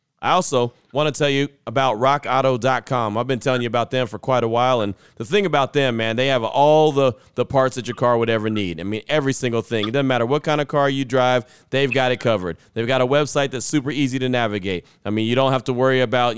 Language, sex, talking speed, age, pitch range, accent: English, male, 260 wpm, 30-49, 115-145 Hz, American